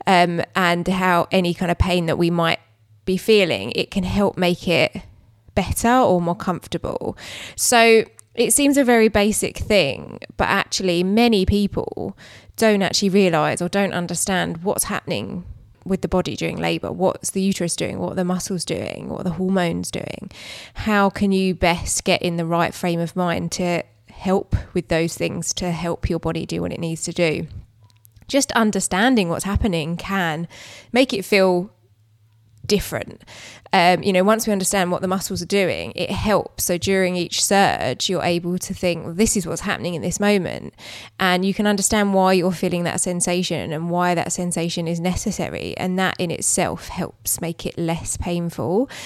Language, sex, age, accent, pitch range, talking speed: English, female, 20-39, British, 170-195 Hz, 175 wpm